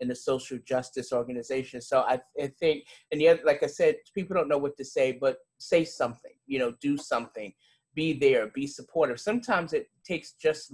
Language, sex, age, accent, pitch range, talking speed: English, male, 30-49, American, 125-180 Hz, 195 wpm